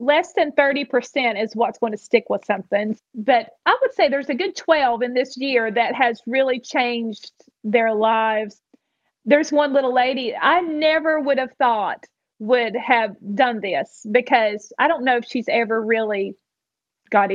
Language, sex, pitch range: English, female, 225-285 Hz